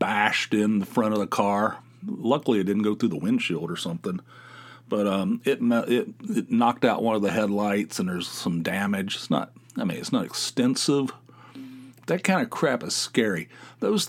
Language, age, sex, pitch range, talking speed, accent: English, 40-59, male, 115-190 Hz, 190 wpm, American